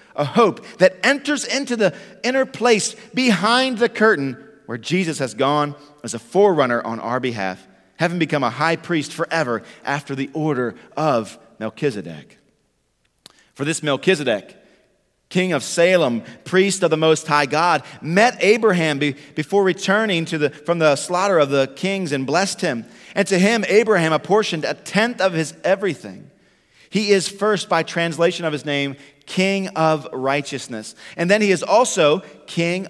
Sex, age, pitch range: male, 40-59, 140-190 Hz